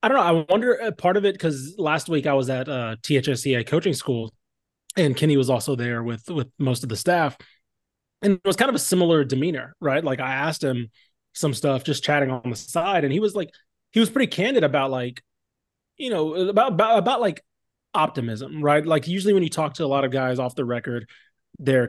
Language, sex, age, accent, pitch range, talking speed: English, male, 20-39, American, 130-175 Hz, 225 wpm